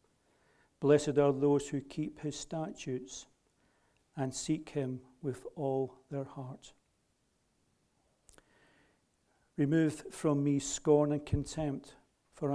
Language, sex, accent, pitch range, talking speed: English, male, British, 135-150 Hz, 100 wpm